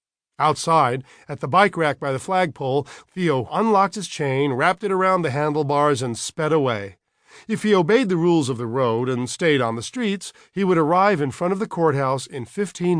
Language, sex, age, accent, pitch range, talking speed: English, male, 50-69, American, 135-185 Hz, 200 wpm